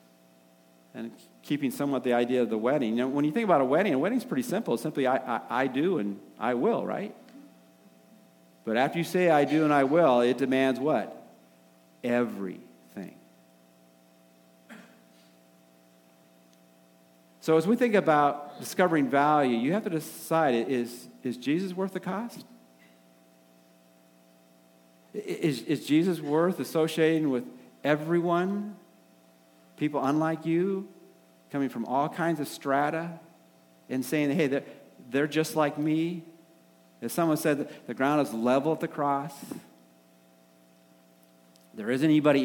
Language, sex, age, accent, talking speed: English, male, 50-69, American, 135 wpm